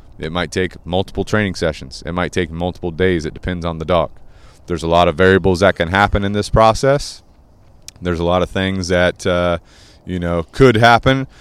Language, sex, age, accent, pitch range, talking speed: English, male, 30-49, American, 85-100 Hz, 200 wpm